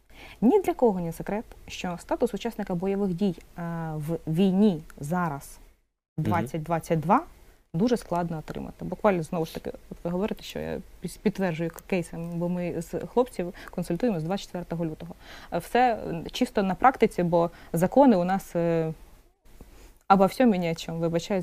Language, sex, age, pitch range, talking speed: Ukrainian, female, 20-39, 175-240 Hz, 140 wpm